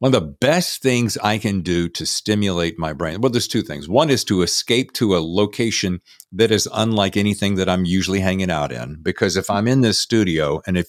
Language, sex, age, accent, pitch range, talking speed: English, male, 50-69, American, 90-125 Hz, 225 wpm